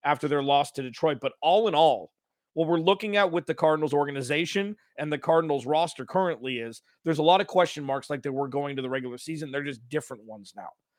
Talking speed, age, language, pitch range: 230 wpm, 30-49, English, 140-165 Hz